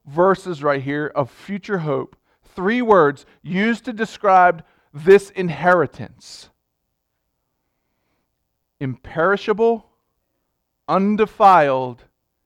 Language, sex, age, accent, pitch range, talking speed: English, male, 40-59, American, 135-195 Hz, 70 wpm